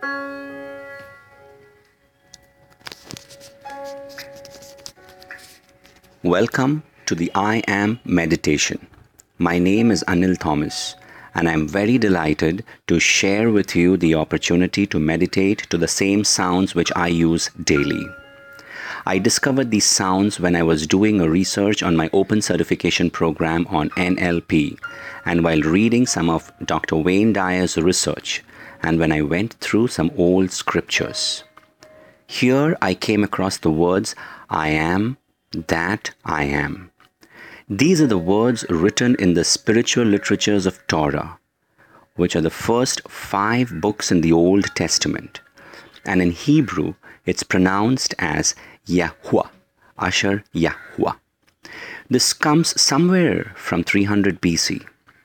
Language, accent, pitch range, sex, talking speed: English, Indian, 85-120 Hz, male, 125 wpm